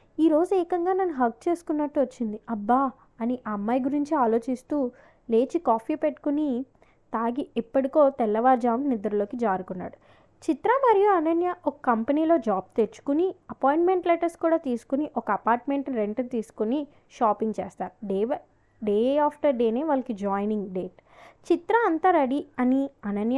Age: 20-39